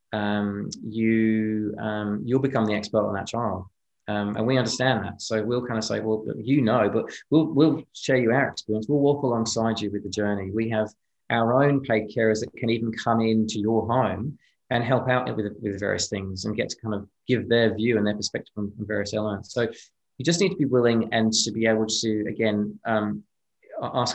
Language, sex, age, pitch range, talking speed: English, male, 20-39, 100-115 Hz, 220 wpm